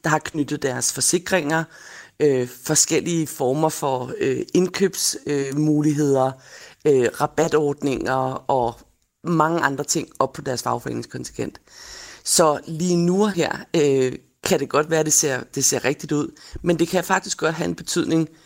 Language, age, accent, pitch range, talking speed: Danish, 30-49, native, 135-170 Hz, 150 wpm